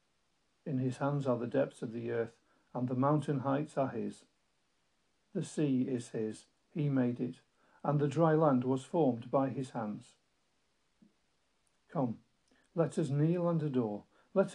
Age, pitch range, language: 50-69, 125-150 Hz, English